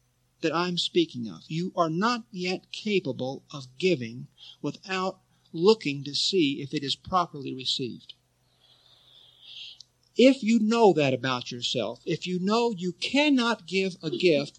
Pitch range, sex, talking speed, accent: 125-185 Hz, male, 140 wpm, American